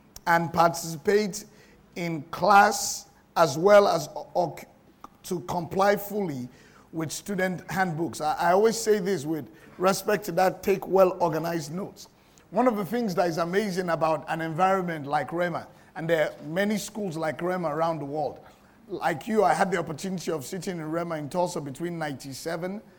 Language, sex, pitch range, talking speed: English, male, 170-220 Hz, 160 wpm